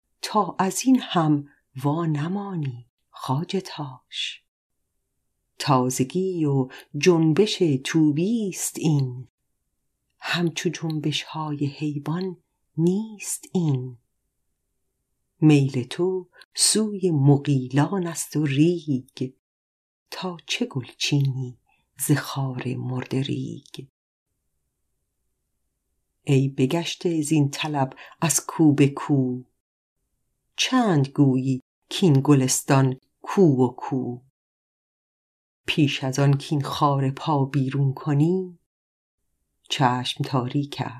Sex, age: female, 40-59